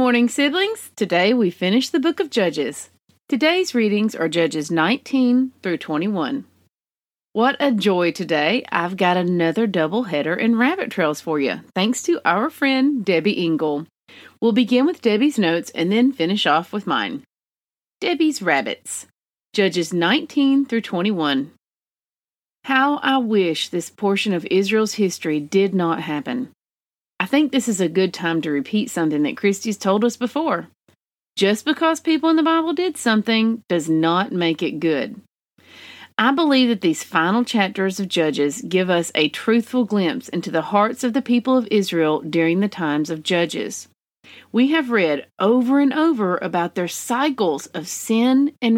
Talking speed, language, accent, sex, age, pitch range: 160 wpm, English, American, female, 40-59, 175-255 Hz